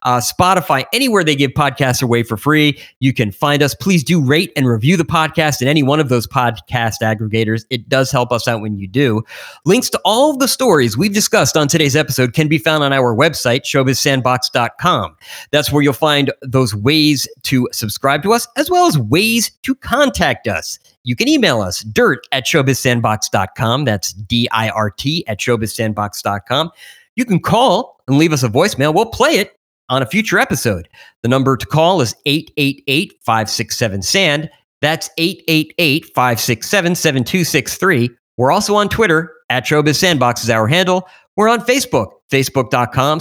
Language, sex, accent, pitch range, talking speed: English, male, American, 120-175 Hz, 160 wpm